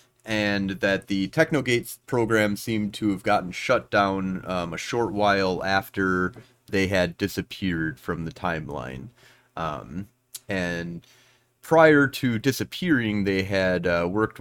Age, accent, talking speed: 30-49, American, 130 wpm